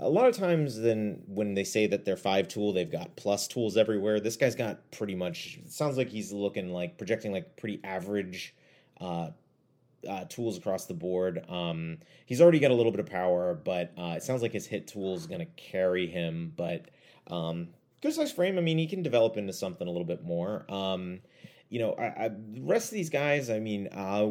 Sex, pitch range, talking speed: male, 85-125 Hz, 215 wpm